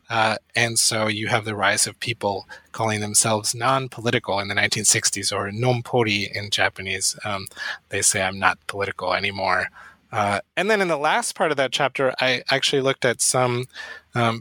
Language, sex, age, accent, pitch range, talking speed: English, male, 20-39, American, 110-135 Hz, 175 wpm